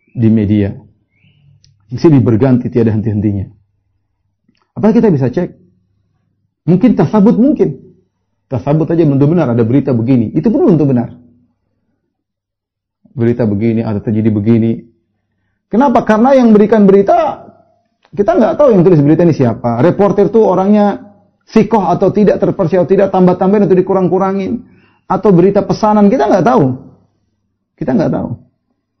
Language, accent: Indonesian, native